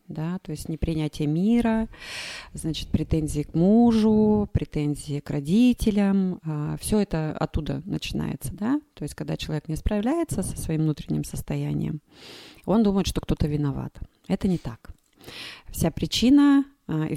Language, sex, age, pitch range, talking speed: Russian, female, 30-49, 150-200 Hz, 135 wpm